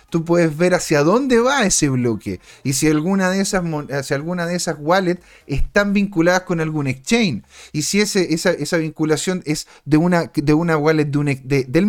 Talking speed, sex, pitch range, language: 155 wpm, male, 150-190 Hz, Spanish